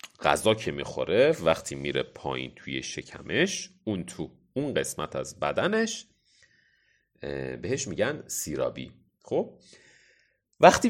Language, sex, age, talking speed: Persian, male, 30-49, 105 wpm